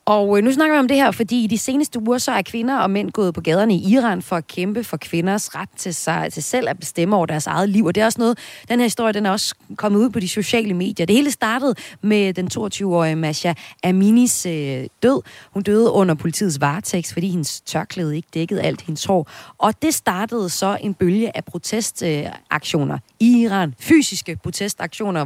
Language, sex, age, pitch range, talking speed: Danish, female, 30-49, 175-230 Hz, 220 wpm